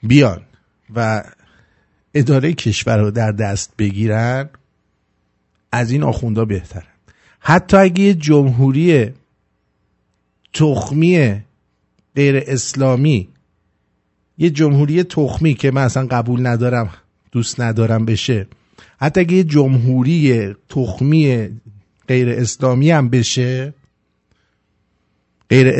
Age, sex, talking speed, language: 50-69, male, 95 wpm, English